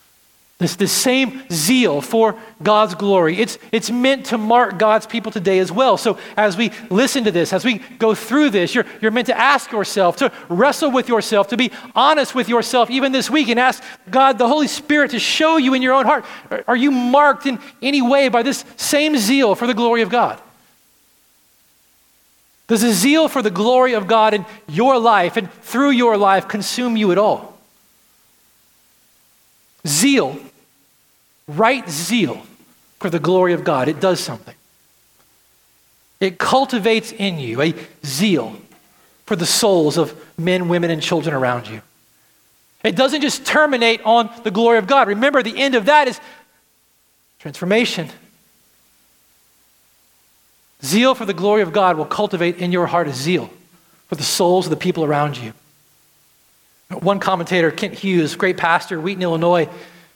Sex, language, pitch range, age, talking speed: male, English, 175-250 Hz, 40-59, 165 wpm